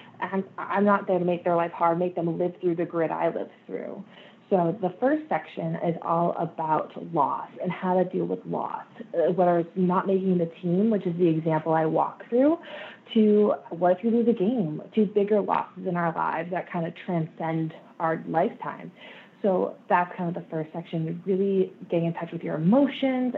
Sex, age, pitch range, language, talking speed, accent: female, 20-39, 170-210 Hz, English, 200 wpm, American